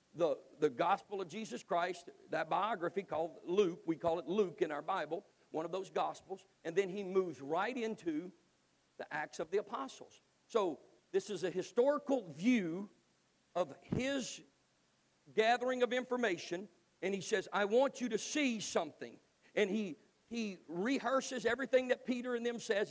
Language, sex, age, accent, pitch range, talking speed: English, male, 50-69, American, 185-250 Hz, 160 wpm